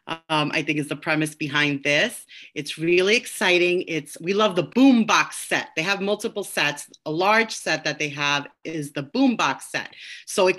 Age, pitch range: 30-49, 160-220 Hz